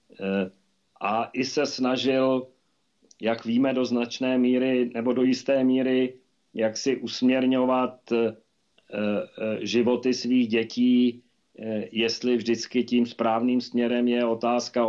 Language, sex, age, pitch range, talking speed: Czech, male, 40-59, 105-115 Hz, 105 wpm